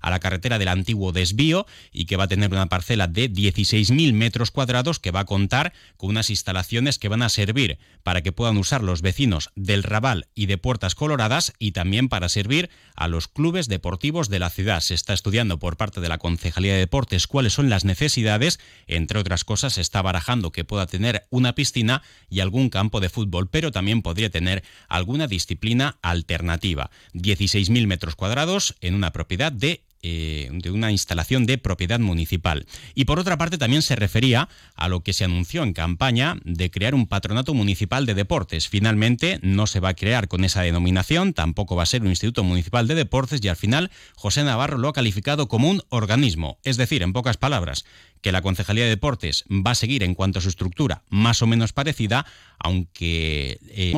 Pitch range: 90-125 Hz